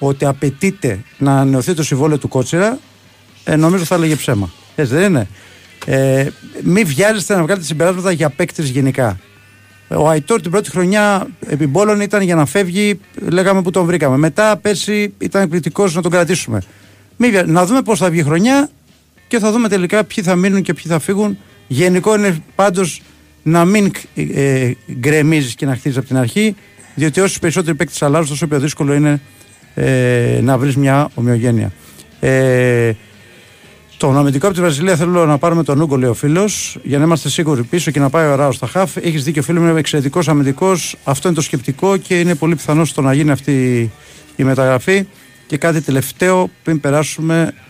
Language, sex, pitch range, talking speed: Greek, male, 135-180 Hz, 175 wpm